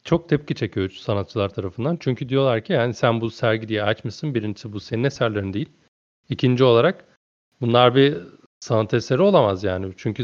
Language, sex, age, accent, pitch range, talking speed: Turkish, male, 40-59, native, 100-125 Hz, 170 wpm